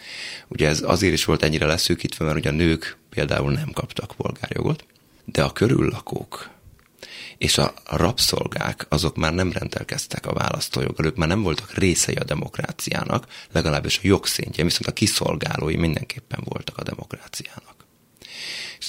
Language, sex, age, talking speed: Hungarian, male, 30-49, 145 wpm